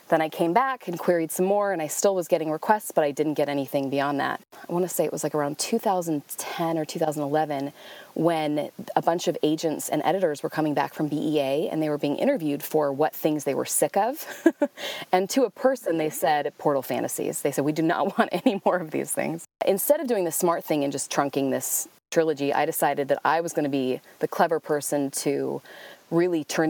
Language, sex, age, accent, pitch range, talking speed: English, female, 30-49, American, 145-180 Hz, 225 wpm